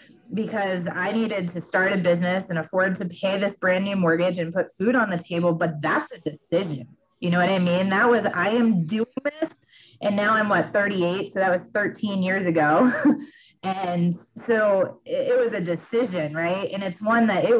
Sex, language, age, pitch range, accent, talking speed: female, English, 20-39, 175-225 Hz, American, 200 wpm